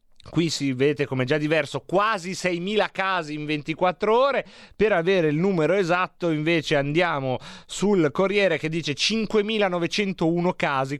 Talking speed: 135 wpm